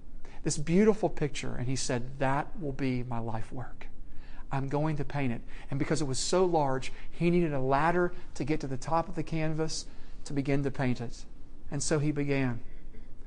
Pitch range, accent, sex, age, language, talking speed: 135-165 Hz, American, male, 40-59, English, 200 wpm